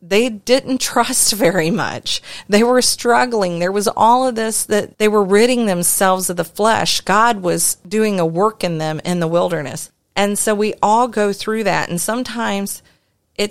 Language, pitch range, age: English, 175-215 Hz, 40-59